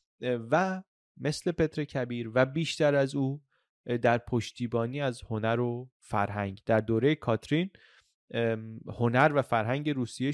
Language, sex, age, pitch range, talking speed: Persian, male, 30-49, 115-150 Hz, 120 wpm